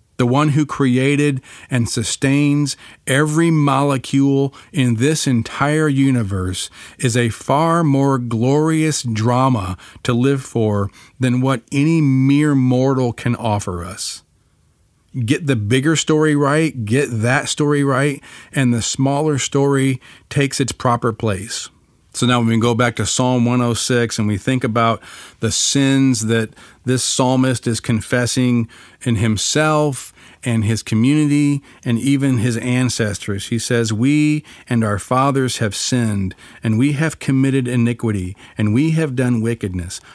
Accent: American